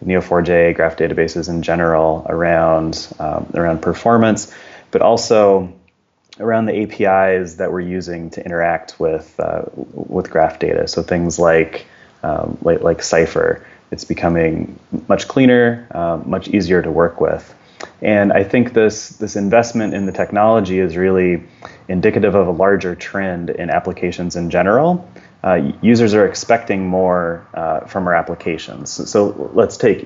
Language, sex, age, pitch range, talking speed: English, male, 30-49, 85-105 Hz, 150 wpm